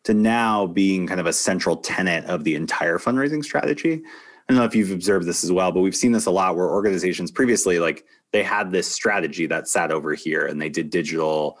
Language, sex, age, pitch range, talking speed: English, male, 30-49, 85-110 Hz, 230 wpm